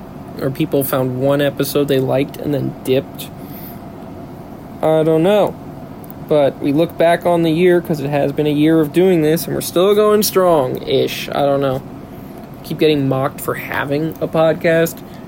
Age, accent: 20-39, American